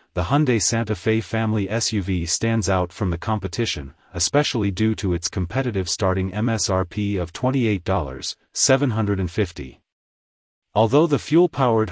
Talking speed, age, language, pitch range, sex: 115 wpm, 40-59, English, 95-115 Hz, male